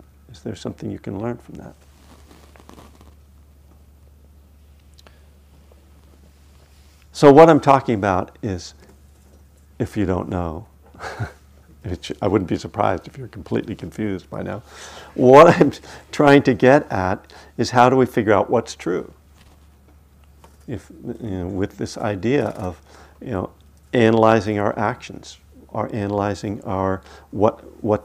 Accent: American